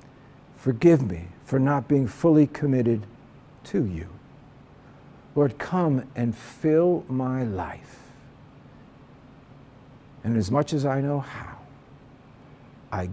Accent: American